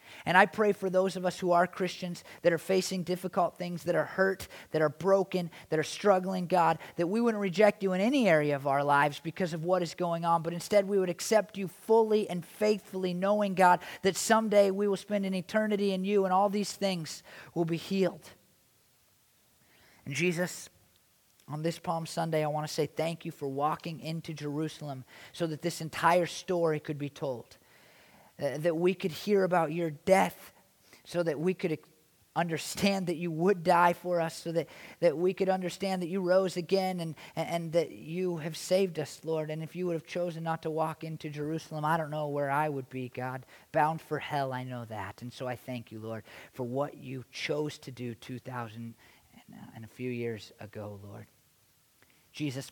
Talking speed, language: 200 wpm, English